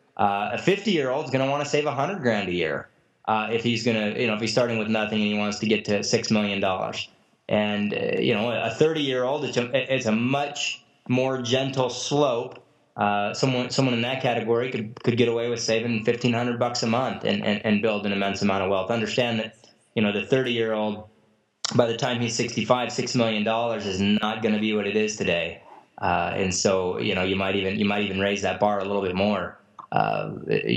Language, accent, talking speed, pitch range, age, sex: English, American, 225 wpm, 105-125 Hz, 20-39, male